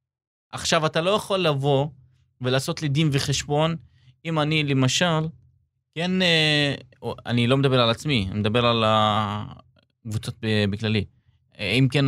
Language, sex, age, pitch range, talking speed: Hebrew, male, 20-39, 115-140 Hz, 130 wpm